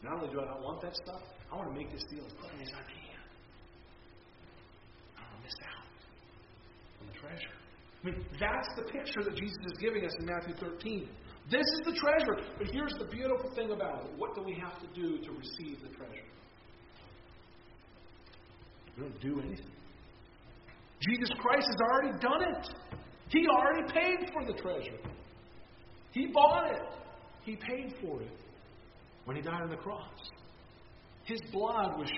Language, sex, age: English, male, 40-59